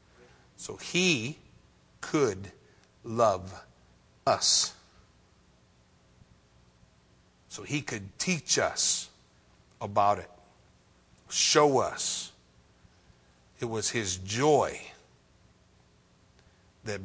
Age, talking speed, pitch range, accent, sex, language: 50-69, 65 wpm, 90-125 Hz, American, male, English